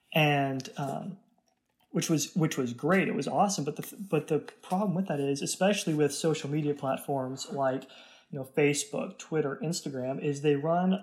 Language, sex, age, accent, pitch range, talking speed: English, male, 20-39, American, 140-170 Hz, 175 wpm